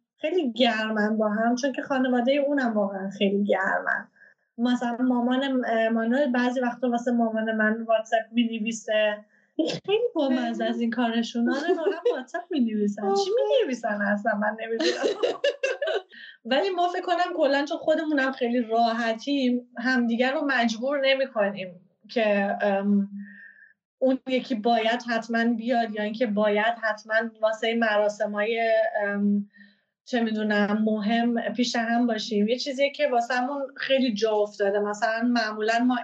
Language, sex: Persian, female